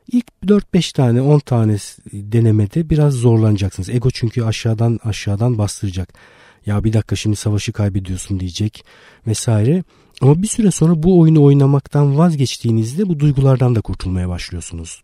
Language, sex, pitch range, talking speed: Turkish, male, 100-125 Hz, 135 wpm